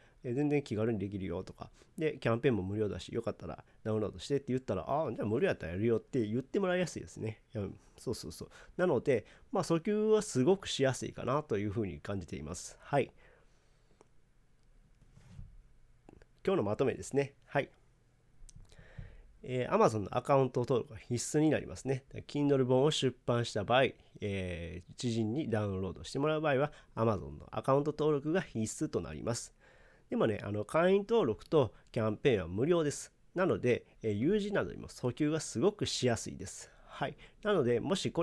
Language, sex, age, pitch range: Japanese, male, 40-59, 105-140 Hz